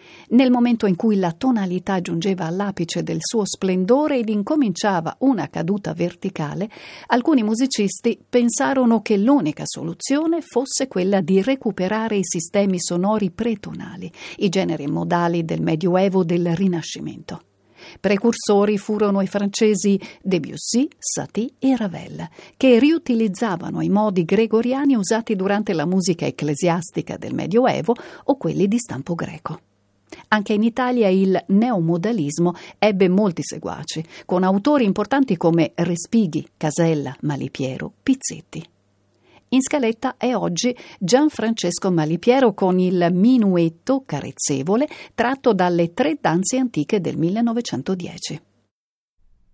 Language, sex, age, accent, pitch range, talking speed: Italian, female, 50-69, native, 175-235 Hz, 115 wpm